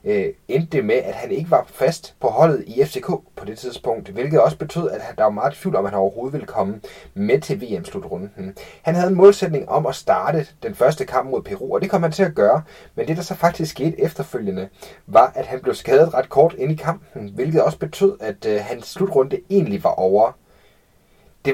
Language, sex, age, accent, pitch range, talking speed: Danish, male, 30-49, native, 145-200 Hz, 215 wpm